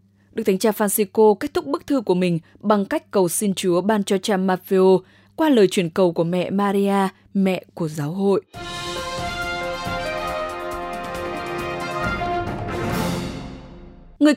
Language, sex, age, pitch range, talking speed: English, female, 20-39, 170-220 Hz, 130 wpm